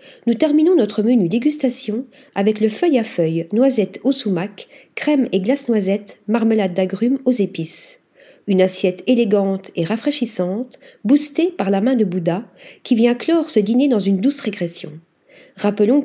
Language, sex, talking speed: French, female, 155 wpm